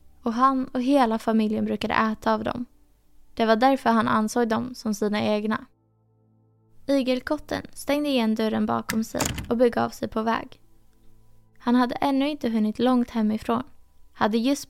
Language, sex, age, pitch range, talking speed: Swedish, female, 20-39, 215-245 Hz, 160 wpm